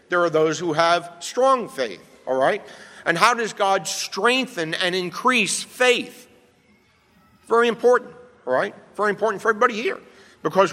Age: 50-69